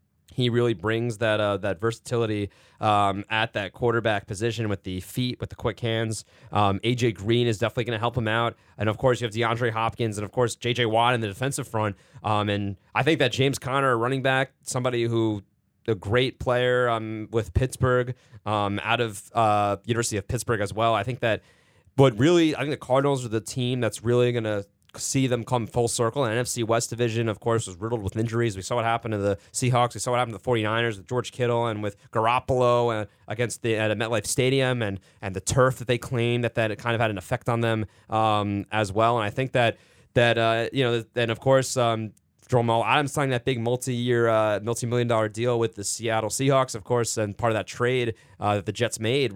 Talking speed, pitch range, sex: 225 wpm, 110-125 Hz, male